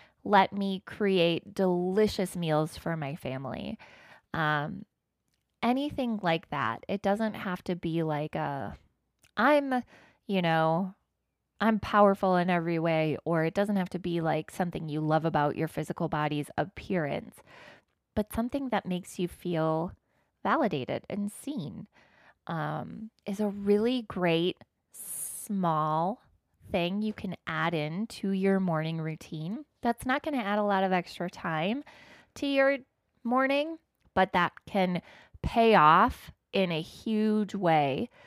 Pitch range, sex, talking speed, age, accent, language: 165-210 Hz, female, 140 wpm, 20-39, American, English